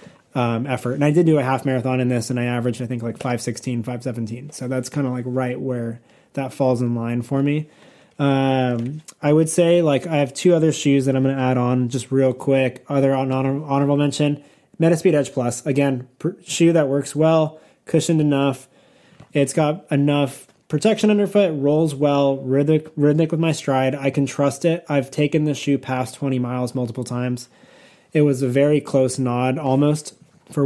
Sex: male